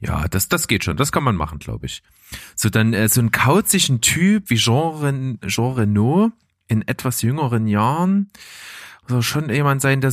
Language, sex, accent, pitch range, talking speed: German, male, German, 100-150 Hz, 180 wpm